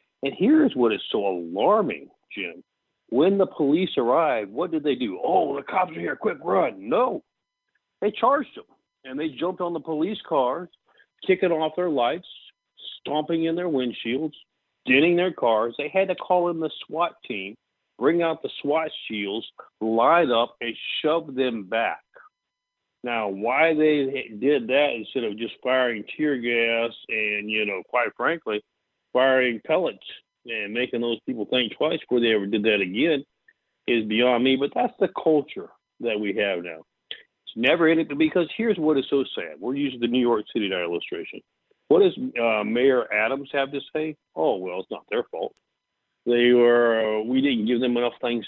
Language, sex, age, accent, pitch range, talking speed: English, male, 50-69, American, 115-165 Hz, 175 wpm